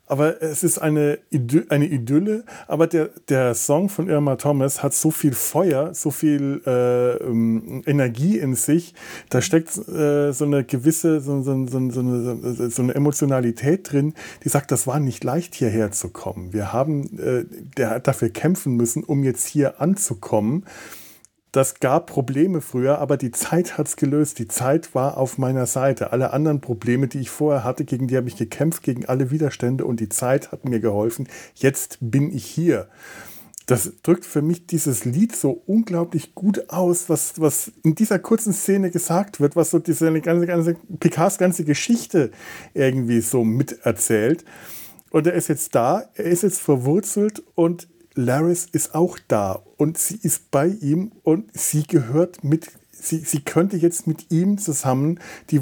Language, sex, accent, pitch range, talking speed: German, male, German, 130-170 Hz, 175 wpm